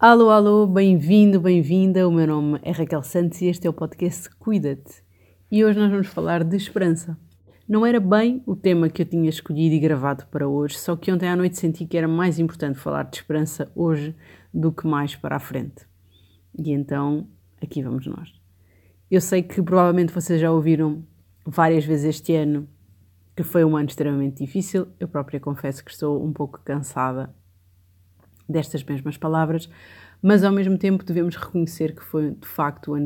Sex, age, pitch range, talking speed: female, 30-49, 135-175 Hz, 185 wpm